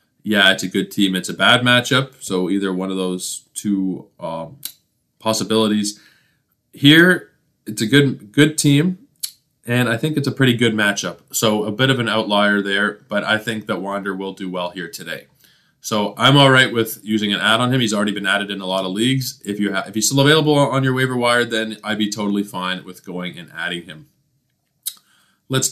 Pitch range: 100-130 Hz